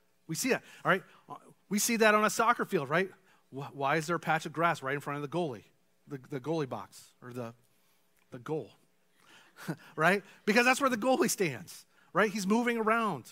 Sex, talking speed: male, 205 wpm